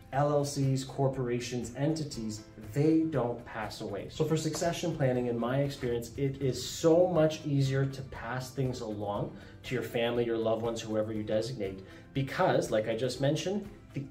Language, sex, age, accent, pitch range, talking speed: English, male, 30-49, American, 115-140 Hz, 160 wpm